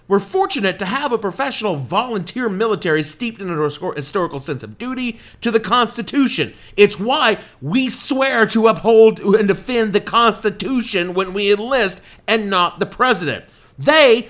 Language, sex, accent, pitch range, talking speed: English, male, American, 140-210 Hz, 150 wpm